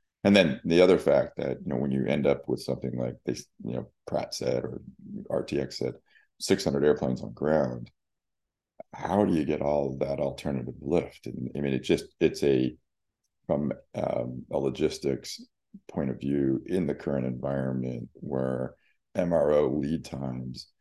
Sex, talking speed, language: male, 165 wpm, English